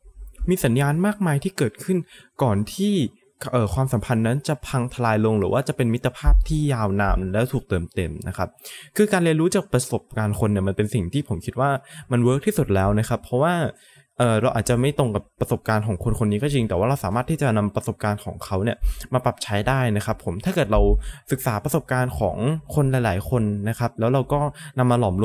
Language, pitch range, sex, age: Thai, 105-140 Hz, male, 20-39